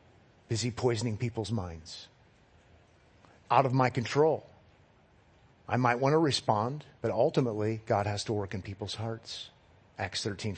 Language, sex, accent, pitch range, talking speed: English, male, American, 135-210 Hz, 135 wpm